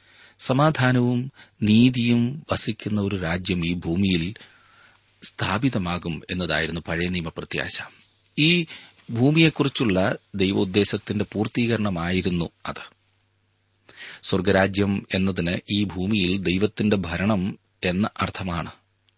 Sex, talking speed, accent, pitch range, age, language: male, 70 wpm, native, 90-115 Hz, 30-49, Malayalam